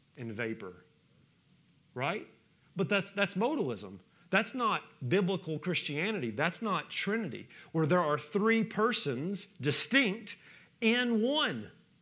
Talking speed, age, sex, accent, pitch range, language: 110 wpm, 40-59, male, American, 160-215 Hz, English